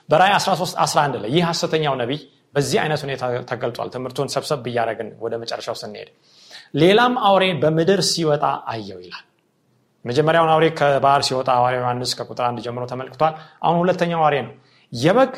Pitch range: 135-175 Hz